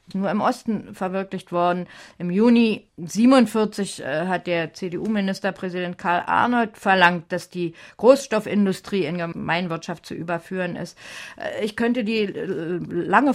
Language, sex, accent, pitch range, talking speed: German, female, German, 180-220 Hz, 115 wpm